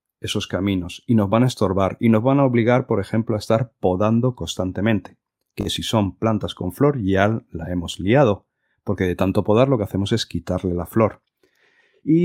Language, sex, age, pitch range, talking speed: Spanish, male, 40-59, 95-125 Hz, 195 wpm